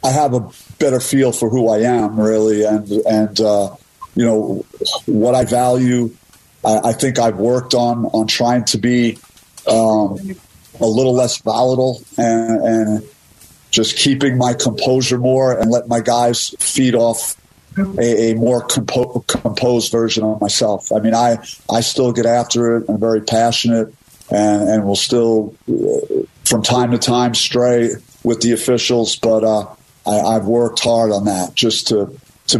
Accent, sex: American, male